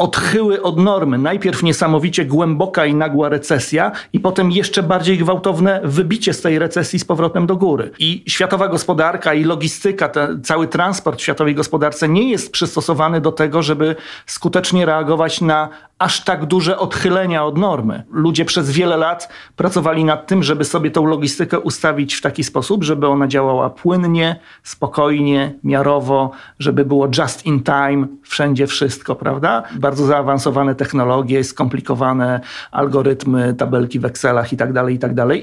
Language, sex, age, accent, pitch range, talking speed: Polish, male, 40-59, native, 140-170 Hz, 155 wpm